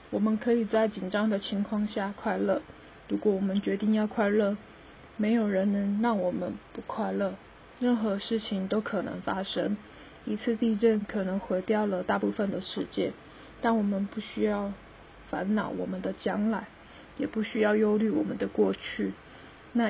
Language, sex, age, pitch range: Chinese, female, 20-39, 200-225 Hz